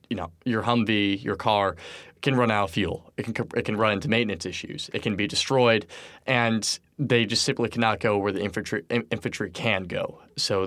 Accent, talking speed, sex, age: American, 200 wpm, male, 20-39